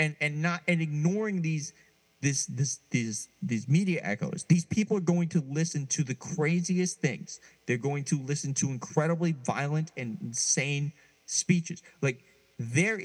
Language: English